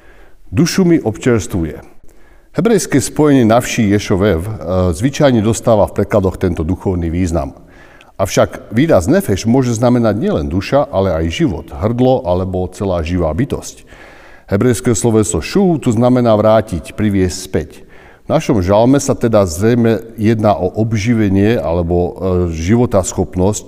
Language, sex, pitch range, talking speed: Slovak, male, 95-120 Hz, 120 wpm